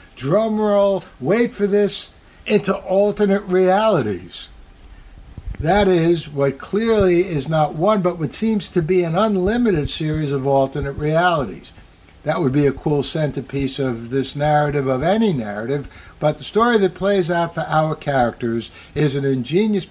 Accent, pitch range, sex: American, 125-180 Hz, male